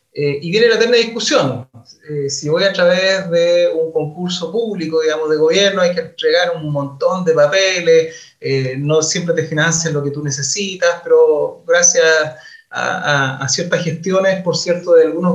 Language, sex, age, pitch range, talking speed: Spanish, male, 30-49, 160-225 Hz, 175 wpm